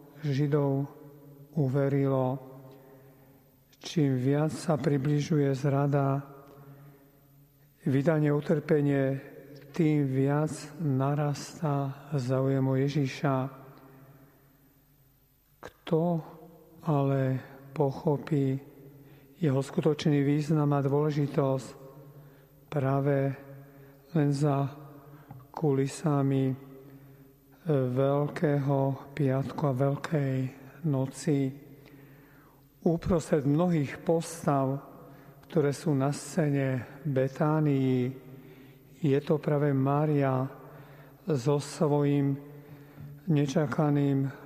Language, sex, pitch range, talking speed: Slovak, male, 135-145 Hz, 60 wpm